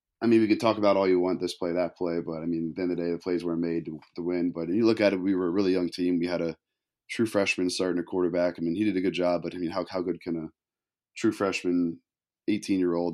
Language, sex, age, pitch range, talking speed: English, male, 20-39, 85-95 Hz, 305 wpm